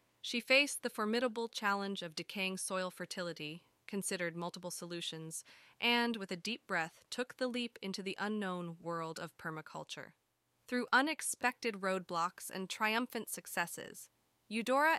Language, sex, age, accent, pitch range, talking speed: English, female, 20-39, American, 180-235 Hz, 130 wpm